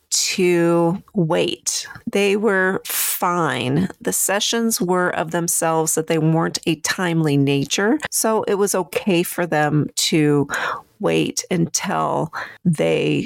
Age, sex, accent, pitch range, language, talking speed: 40-59, female, American, 160-205 Hz, English, 120 wpm